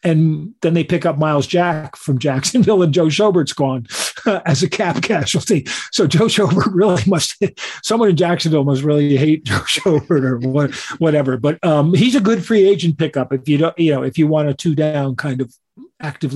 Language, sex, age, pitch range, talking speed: English, male, 50-69, 130-160 Hz, 200 wpm